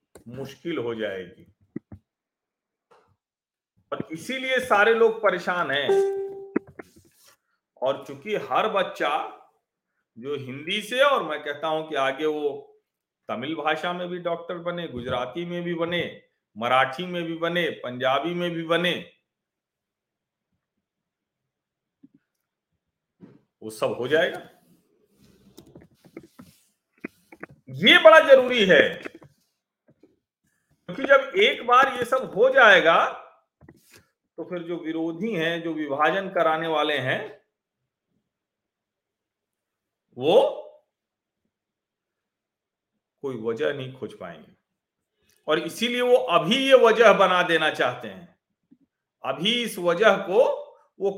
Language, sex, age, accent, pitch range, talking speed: Hindi, male, 50-69, native, 155-230 Hz, 100 wpm